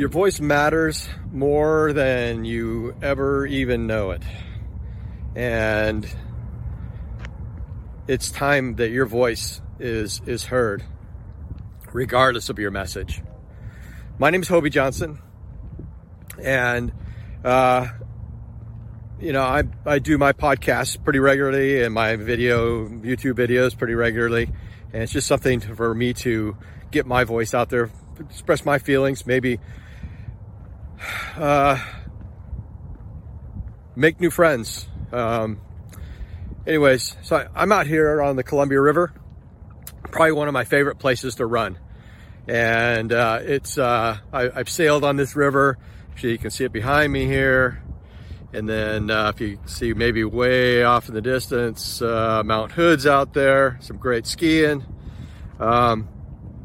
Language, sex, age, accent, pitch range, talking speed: English, male, 40-59, American, 105-135 Hz, 130 wpm